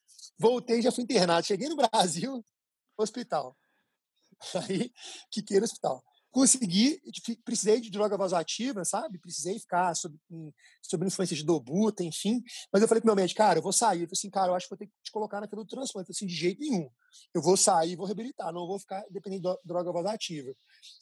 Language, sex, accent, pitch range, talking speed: Portuguese, male, Brazilian, 185-225 Hz, 190 wpm